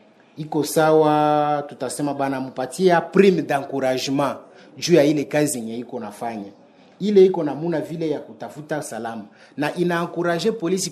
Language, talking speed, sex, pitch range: French, 135 wpm, male, 130-165 Hz